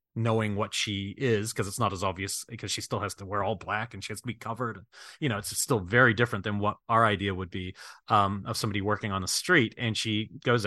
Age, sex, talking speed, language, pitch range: 30-49, male, 260 wpm, English, 100-115 Hz